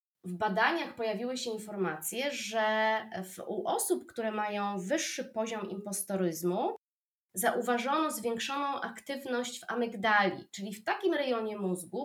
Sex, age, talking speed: female, 20-39, 115 wpm